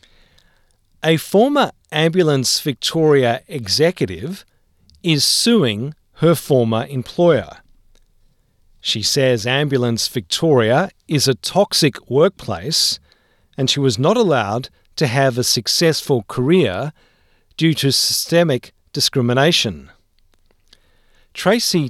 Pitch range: 105-155 Hz